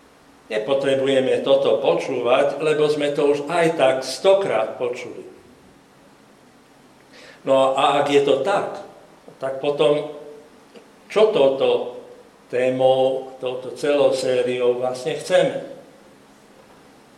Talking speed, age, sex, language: 95 wpm, 60-79, male, Slovak